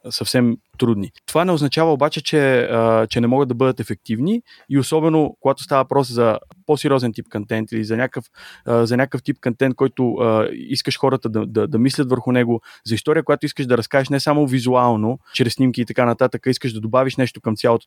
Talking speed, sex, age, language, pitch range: 195 wpm, male, 20-39, Bulgarian, 115-140 Hz